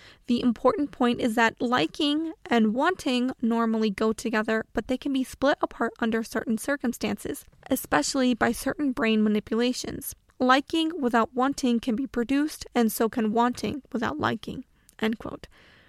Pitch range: 230-270 Hz